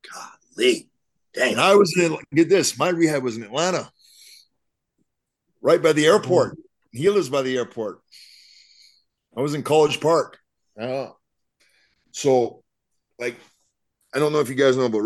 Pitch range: 115-170 Hz